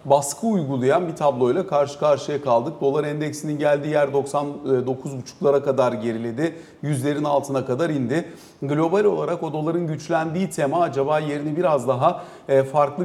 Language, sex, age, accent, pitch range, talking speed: Turkish, male, 40-59, native, 135-175 Hz, 135 wpm